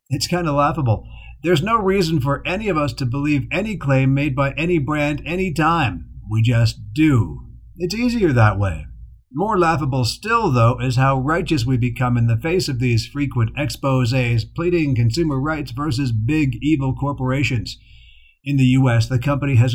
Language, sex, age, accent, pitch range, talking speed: English, male, 50-69, American, 115-150 Hz, 175 wpm